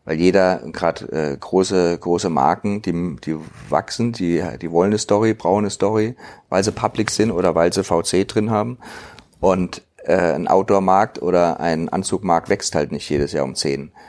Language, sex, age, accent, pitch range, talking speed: German, male, 40-59, German, 85-105 Hz, 180 wpm